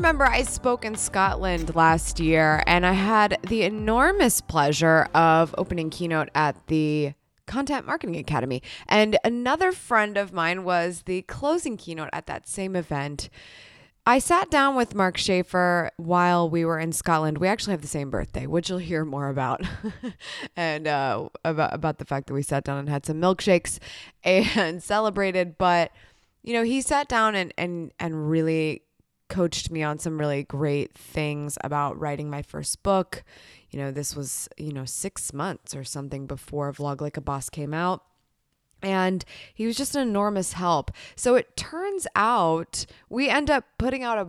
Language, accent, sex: English, American, female